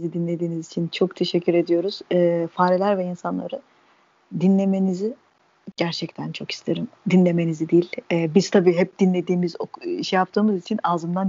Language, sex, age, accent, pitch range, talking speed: Turkish, female, 30-49, native, 175-215 Hz, 130 wpm